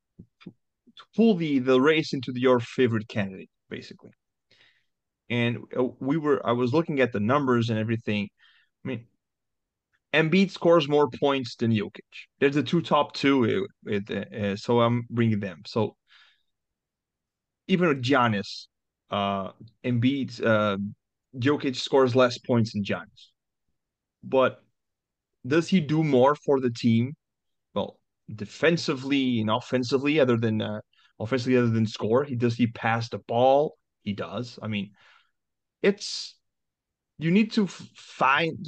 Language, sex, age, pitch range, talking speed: English, male, 30-49, 115-145 Hz, 130 wpm